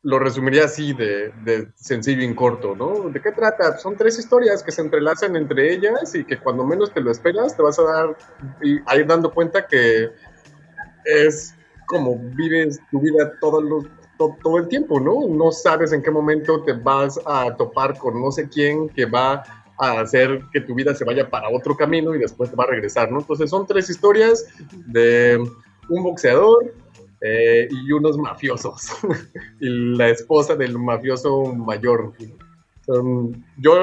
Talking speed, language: 175 wpm, Spanish